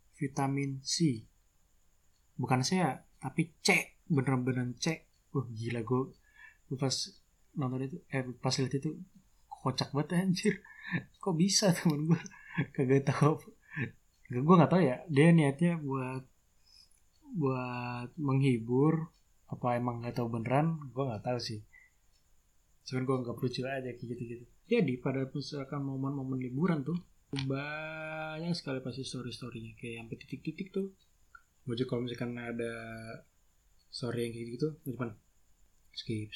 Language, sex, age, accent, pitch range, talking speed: Indonesian, male, 20-39, native, 115-145 Hz, 125 wpm